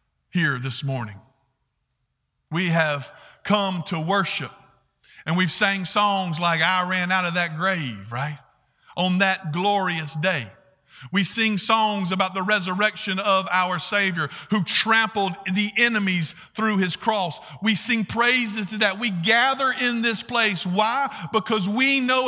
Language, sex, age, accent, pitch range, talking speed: English, male, 50-69, American, 150-225 Hz, 145 wpm